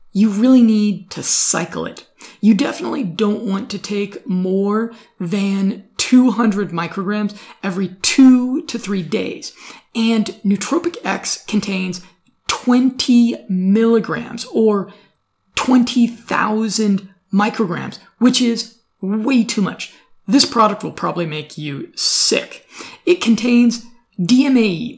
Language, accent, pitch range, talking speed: English, American, 195-240 Hz, 110 wpm